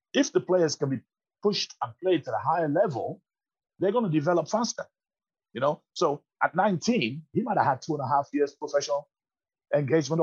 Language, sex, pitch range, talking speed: English, male, 125-170 Hz, 195 wpm